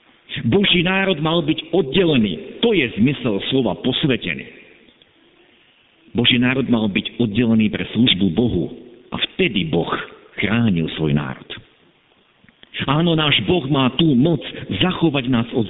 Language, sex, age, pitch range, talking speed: Slovak, male, 50-69, 110-140 Hz, 125 wpm